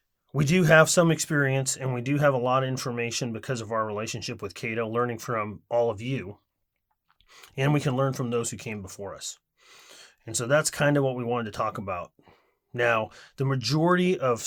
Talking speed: 205 wpm